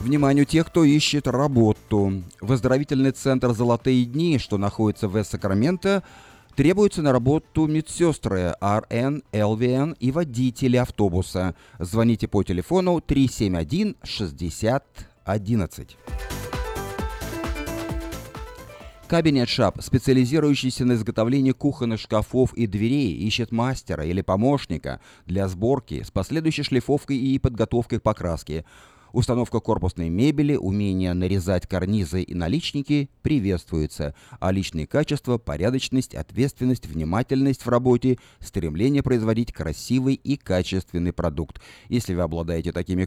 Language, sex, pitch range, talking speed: Russian, male, 95-135 Hz, 105 wpm